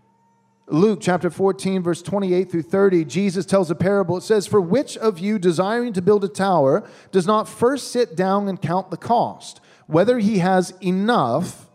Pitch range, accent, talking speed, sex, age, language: 150-205 Hz, American, 180 wpm, male, 40-59, English